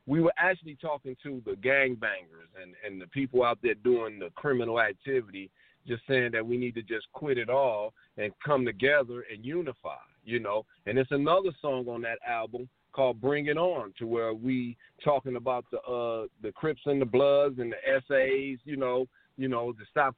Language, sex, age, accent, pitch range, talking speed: English, male, 40-59, American, 120-140 Hz, 195 wpm